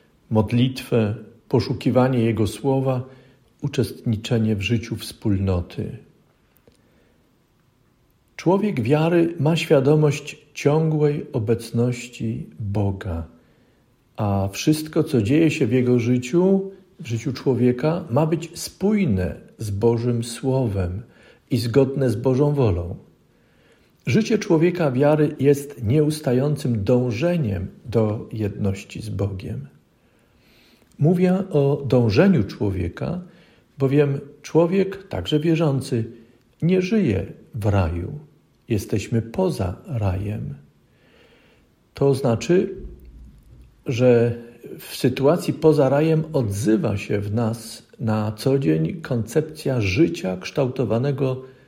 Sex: male